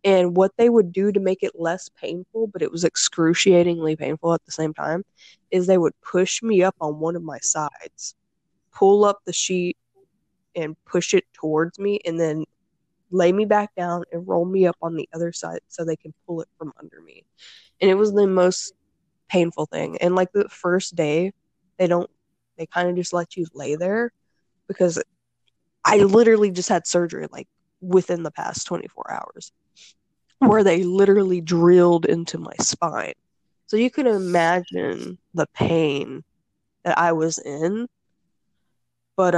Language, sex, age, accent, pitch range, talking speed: English, female, 20-39, American, 165-190 Hz, 170 wpm